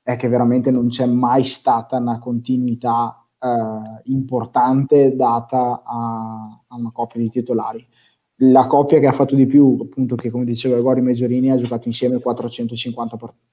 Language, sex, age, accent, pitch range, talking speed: Italian, male, 20-39, native, 120-140 Hz, 160 wpm